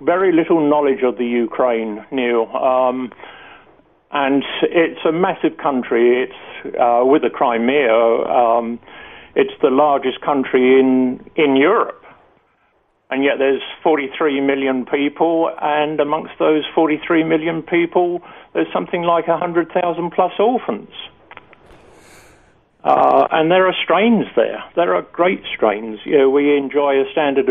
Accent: British